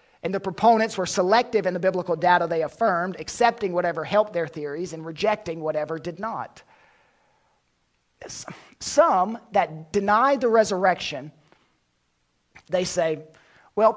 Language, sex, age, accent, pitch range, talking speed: English, male, 40-59, American, 185-255 Hz, 125 wpm